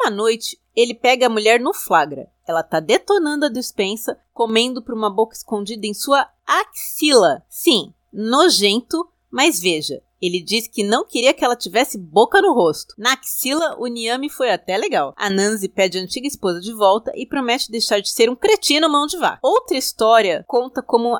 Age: 30-49